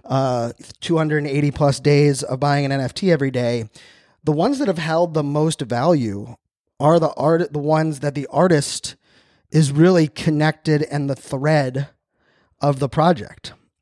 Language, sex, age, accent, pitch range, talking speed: English, male, 20-39, American, 135-160 Hz, 150 wpm